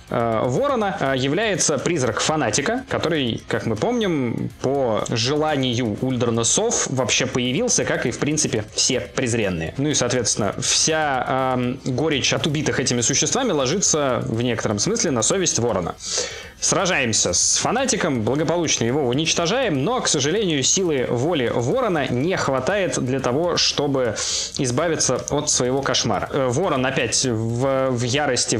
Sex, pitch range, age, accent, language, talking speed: male, 120-150 Hz, 20-39, native, Russian, 130 wpm